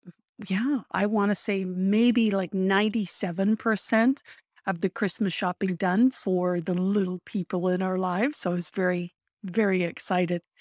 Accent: American